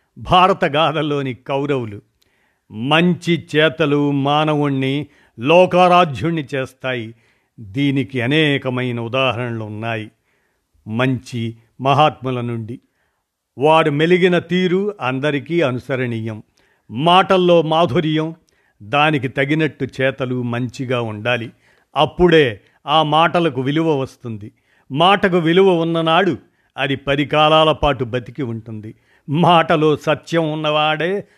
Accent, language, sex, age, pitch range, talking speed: native, Telugu, male, 50-69, 125-165 Hz, 80 wpm